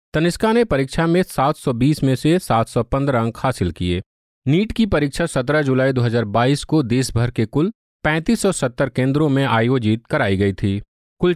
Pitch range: 120-160 Hz